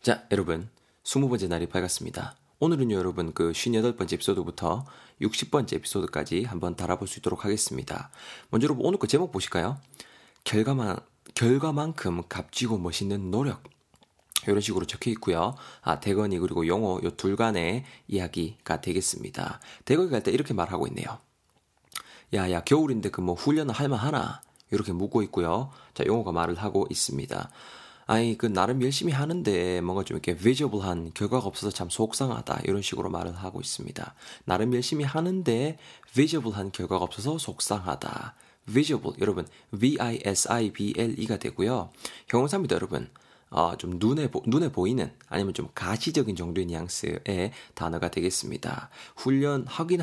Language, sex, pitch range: Korean, male, 90-130 Hz